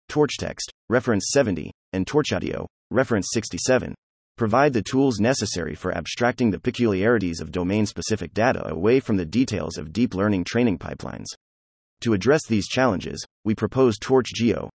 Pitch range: 90-120 Hz